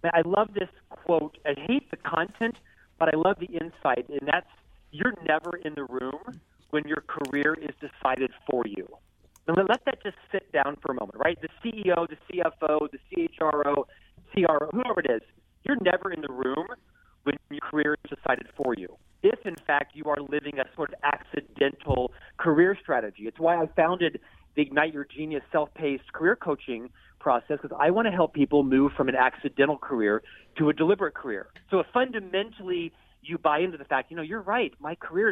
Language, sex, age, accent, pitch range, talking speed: English, male, 40-59, American, 140-170 Hz, 190 wpm